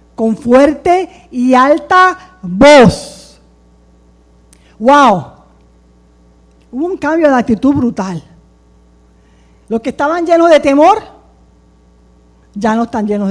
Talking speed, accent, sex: 100 wpm, American, female